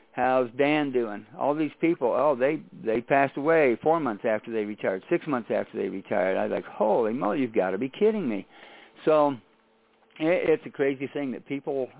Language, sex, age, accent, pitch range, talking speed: English, male, 50-69, American, 120-150 Hz, 200 wpm